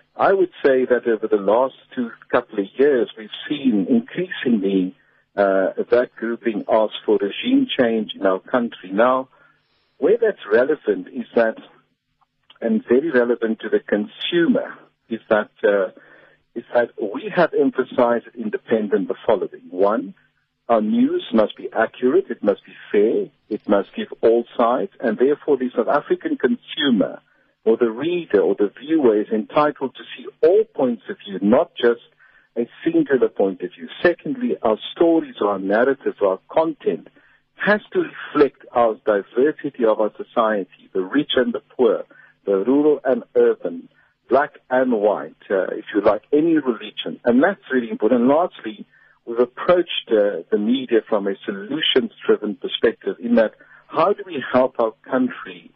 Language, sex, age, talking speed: English, male, 60-79, 160 wpm